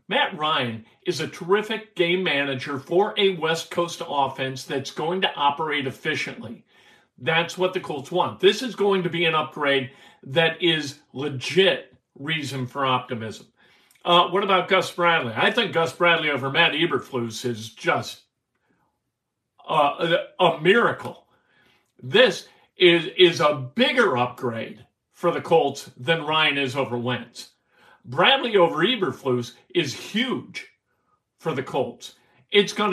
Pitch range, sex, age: 135-185 Hz, male, 50-69